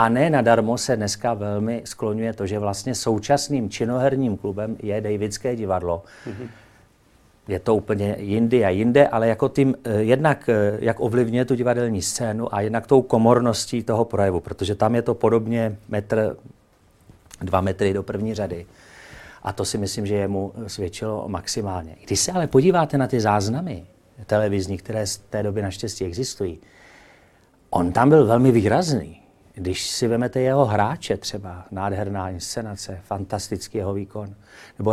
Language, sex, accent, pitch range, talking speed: Czech, male, native, 100-120 Hz, 150 wpm